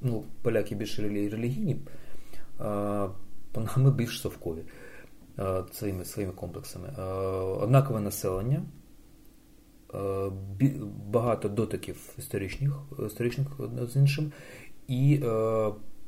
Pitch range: 100-140 Hz